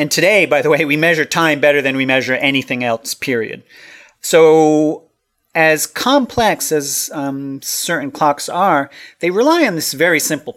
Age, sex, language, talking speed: 30-49, male, English, 165 wpm